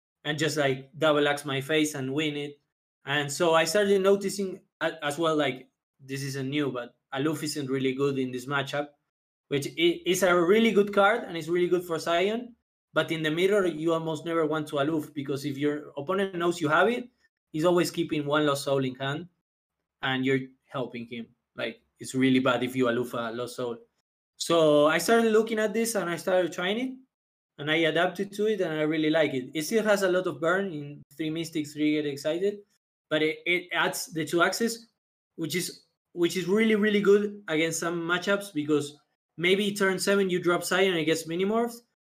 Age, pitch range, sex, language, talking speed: 20-39, 145-185 Hz, male, English, 205 wpm